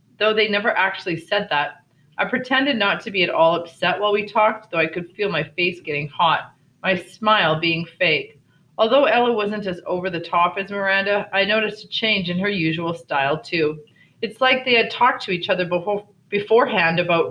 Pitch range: 165-215 Hz